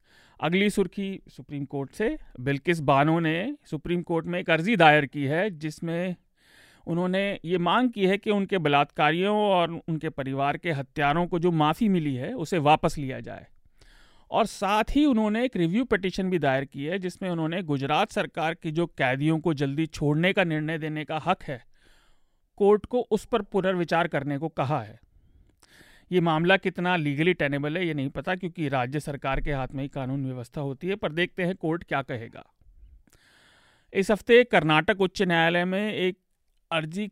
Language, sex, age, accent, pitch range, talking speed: Hindi, male, 40-59, native, 145-190 Hz, 175 wpm